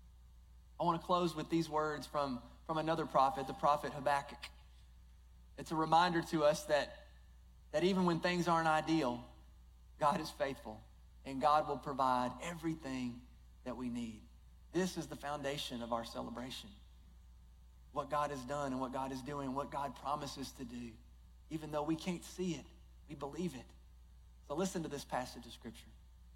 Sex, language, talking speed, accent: male, English, 165 wpm, American